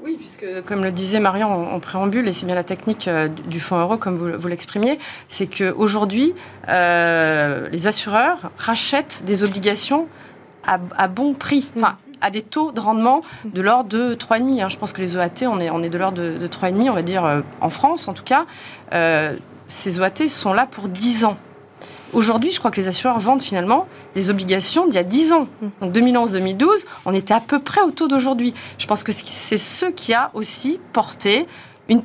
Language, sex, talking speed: French, female, 195 wpm